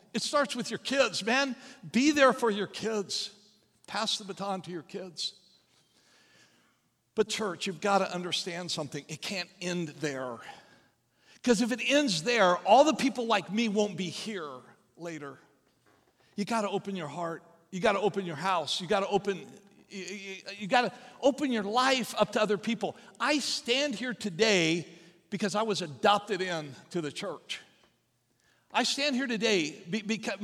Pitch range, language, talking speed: 180-230 Hz, English, 165 wpm